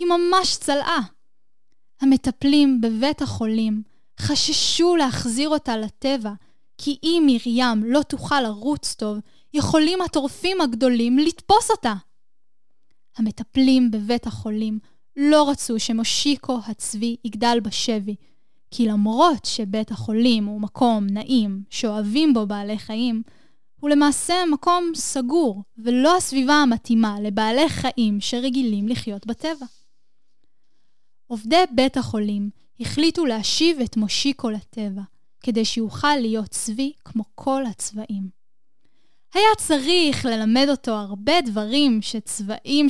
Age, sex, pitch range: 10-29, female, 225-305 Hz